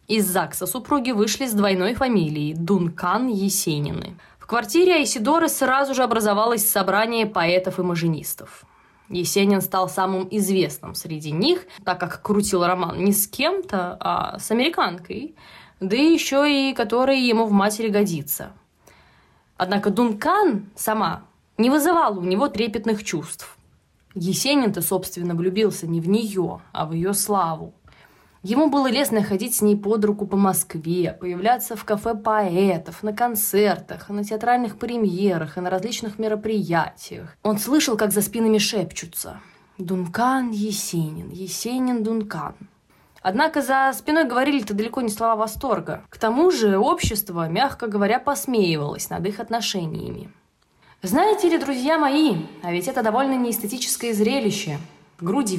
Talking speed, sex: 135 wpm, female